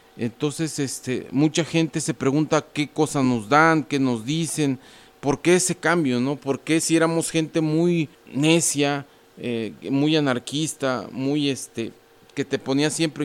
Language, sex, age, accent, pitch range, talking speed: Spanish, male, 40-59, Mexican, 130-160 Hz, 150 wpm